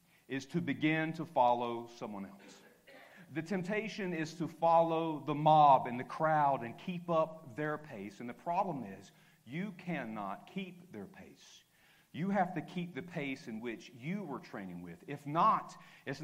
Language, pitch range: English, 140-180 Hz